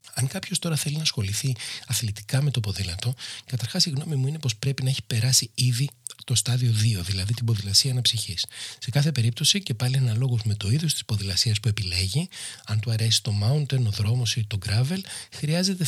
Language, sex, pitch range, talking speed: Greek, male, 110-145 Hz, 195 wpm